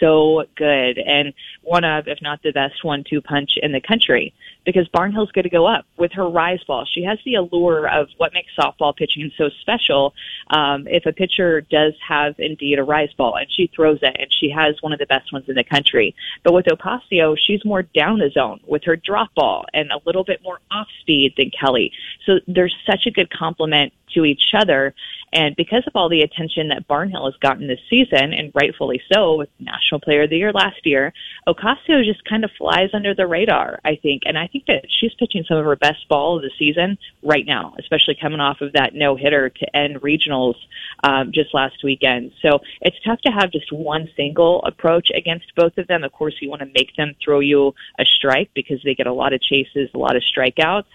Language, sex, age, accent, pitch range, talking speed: English, female, 20-39, American, 145-180 Hz, 220 wpm